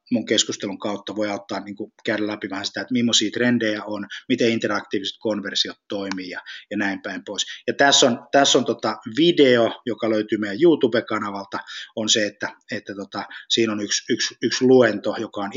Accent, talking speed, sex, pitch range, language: native, 180 wpm, male, 100-125 Hz, Finnish